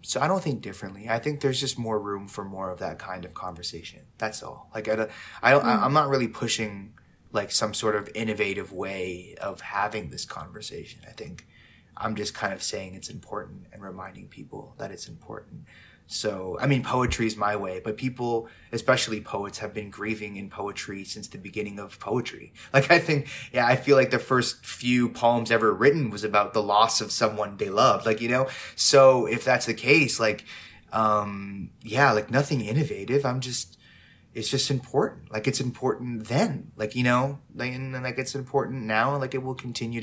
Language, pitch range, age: English, 105-130 Hz, 20-39